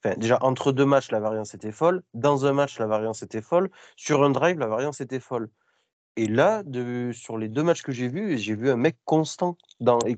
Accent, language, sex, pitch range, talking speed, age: French, French, male, 115-140 Hz, 235 wpm, 20-39